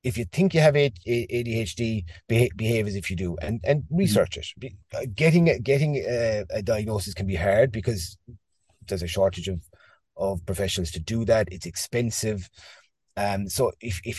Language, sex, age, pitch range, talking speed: English, male, 30-49, 95-115 Hz, 165 wpm